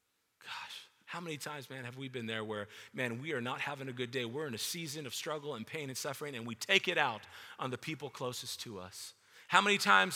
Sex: male